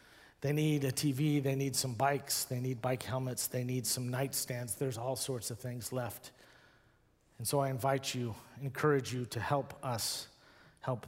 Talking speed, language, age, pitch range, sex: 180 wpm, English, 40-59, 125-160 Hz, male